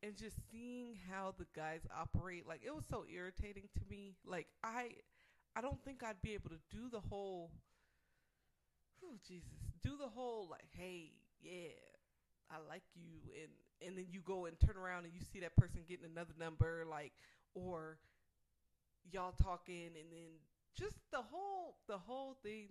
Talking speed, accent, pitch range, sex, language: 170 wpm, American, 160-205 Hz, female, English